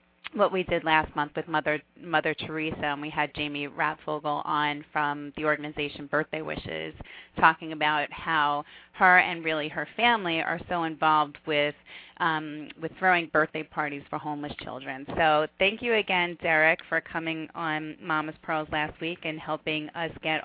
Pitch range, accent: 155-185 Hz, American